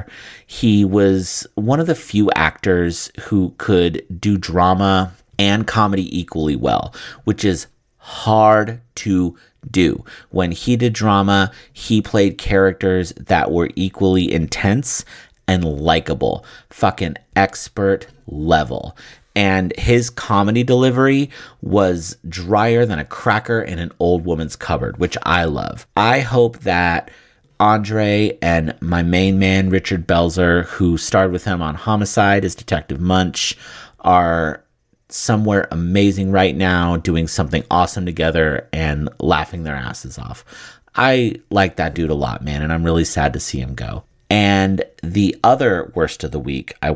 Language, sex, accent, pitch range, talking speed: English, male, American, 85-105 Hz, 140 wpm